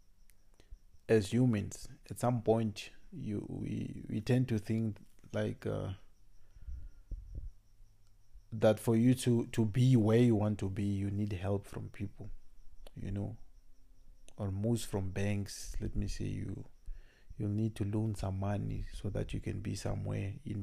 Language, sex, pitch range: English, male, 100-115 Hz